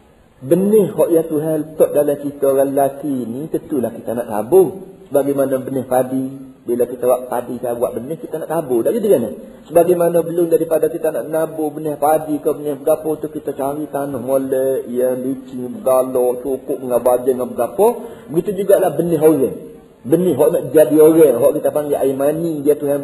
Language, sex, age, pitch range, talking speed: Malay, male, 50-69, 135-185 Hz, 190 wpm